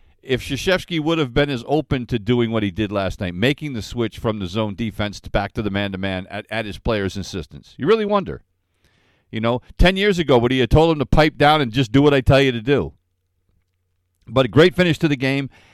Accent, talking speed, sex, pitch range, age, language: American, 235 wpm, male, 100-145 Hz, 50-69, English